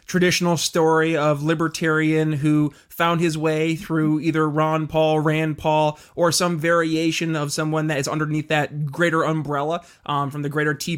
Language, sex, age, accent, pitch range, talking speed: English, male, 20-39, American, 150-175 Hz, 165 wpm